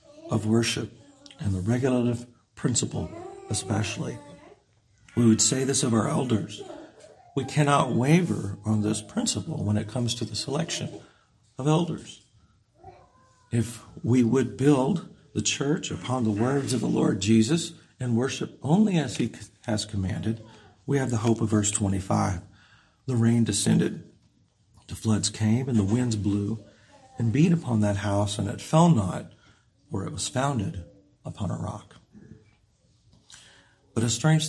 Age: 50-69